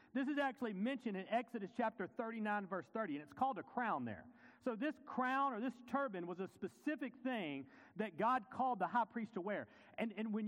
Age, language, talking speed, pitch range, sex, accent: 40-59, English, 210 wpm, 215-275 Hz, male, American